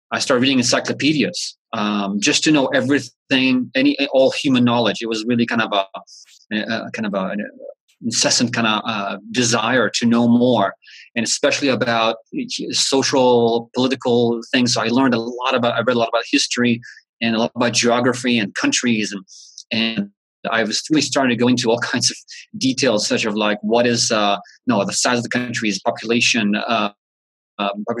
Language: English